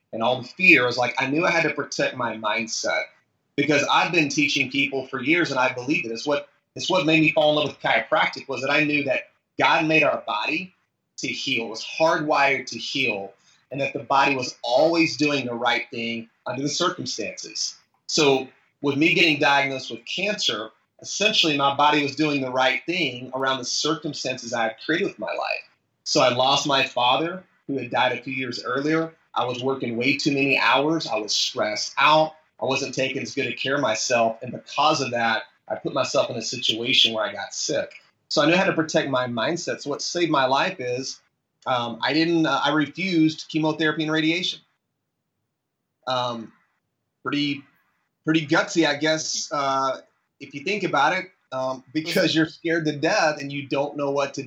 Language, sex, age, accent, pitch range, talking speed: English, male, 30-49, American, 130-160 Hz, 195 wpm